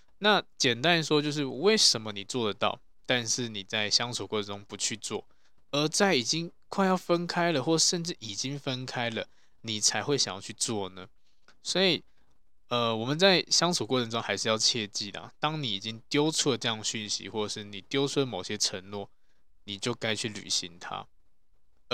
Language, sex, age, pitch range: Chinese, male, 20-39, 105-135 Hz